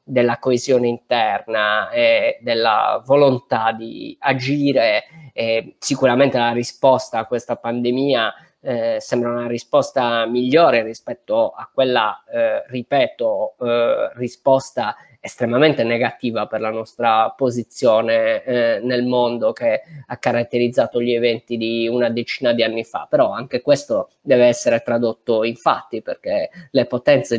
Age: 20-39